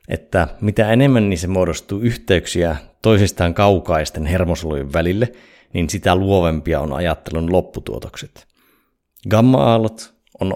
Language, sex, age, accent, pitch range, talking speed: Finnish, male, 30-49, native, 80-100 Hz, 110 wpm